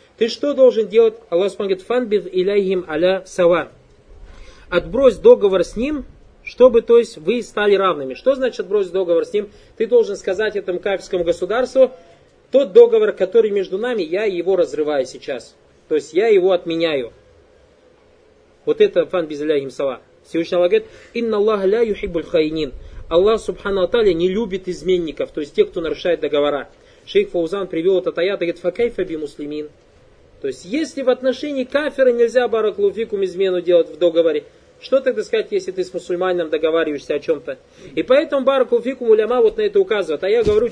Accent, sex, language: native, male, Russian